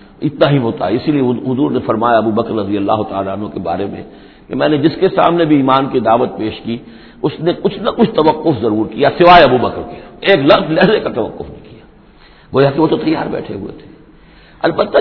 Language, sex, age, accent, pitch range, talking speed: English, male, 60-79, Indian, 115-175 Hz, 160 wpm